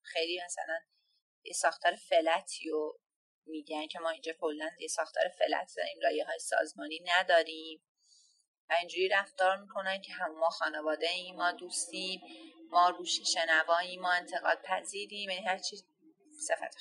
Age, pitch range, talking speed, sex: 30-49, 170-240 Hz, 145 wpm, female